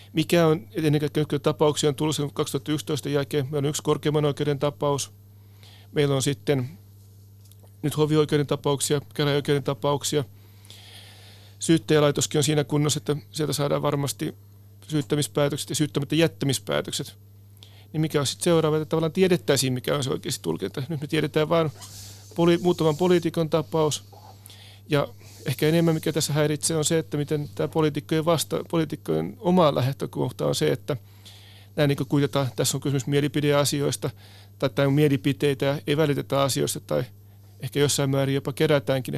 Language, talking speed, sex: Finnish, 145 wpm, male